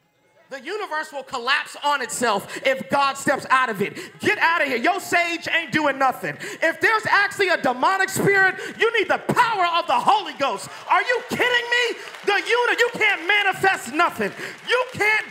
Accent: American